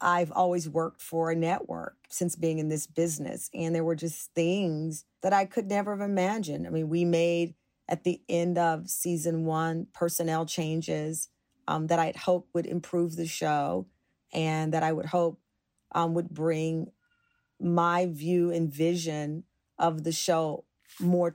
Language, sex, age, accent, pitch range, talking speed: English, female, 40-59, American, 165-200 Hz, 165 wpm